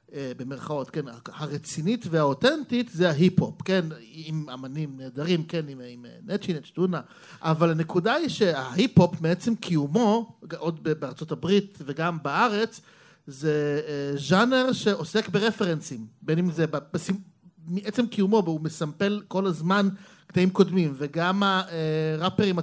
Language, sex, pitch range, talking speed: Hebrew, male, 155-200 Hz, 115 wpm